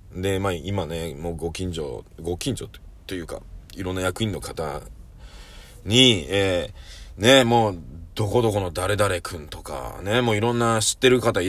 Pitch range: 90-125 Hz